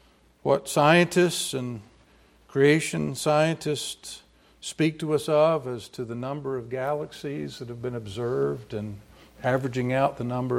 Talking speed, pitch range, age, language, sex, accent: 135 wpm, 105-145 Hz, 60-79, English, male, American